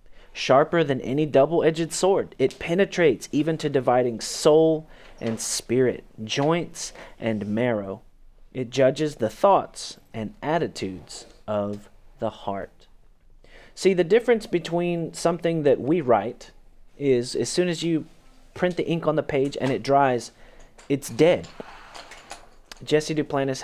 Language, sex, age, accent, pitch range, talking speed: English, male, 30-49, American, 115-155 Hz, 130 wpm